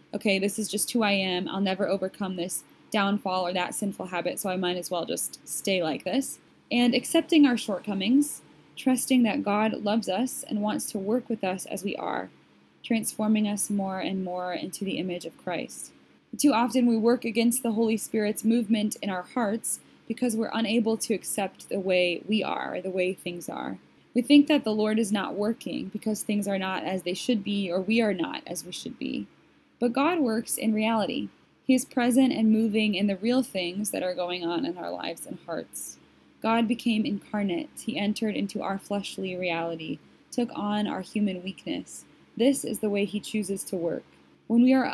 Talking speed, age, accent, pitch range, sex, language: 200 wpm, 20-39, American, 190-235 Hz, female, English